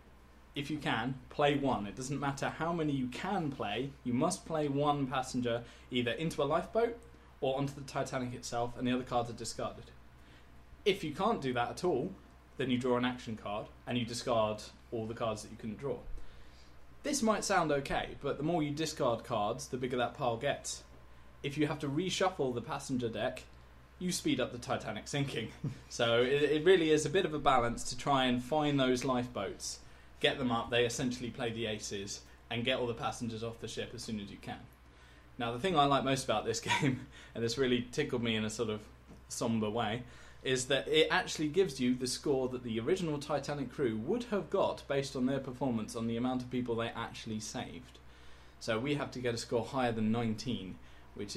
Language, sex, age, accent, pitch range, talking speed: English, male, 20-39, British, 110-140 Hz, 210 wpm